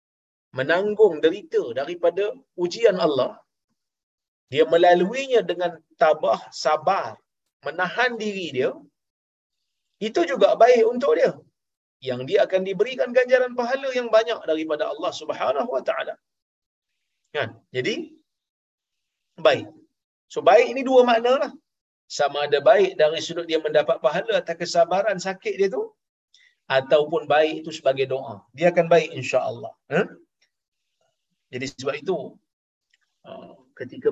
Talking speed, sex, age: 120 wpm, male, 40-59